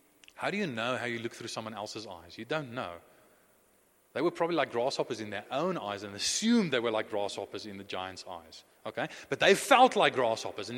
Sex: male